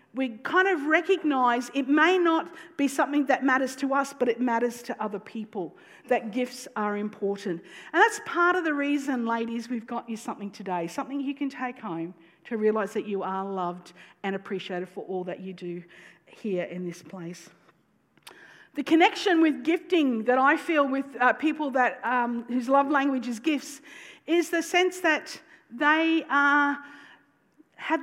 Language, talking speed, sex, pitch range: English, 175 wpm, female, 220-305 Hz